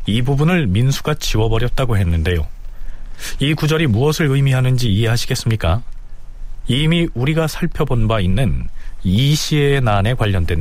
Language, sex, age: Korean, male, 40-59